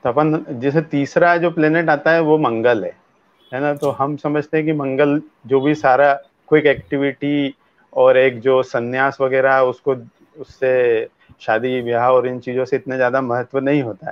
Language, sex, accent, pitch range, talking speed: Hindi, male, native, 135-160 Hz, 180 wpm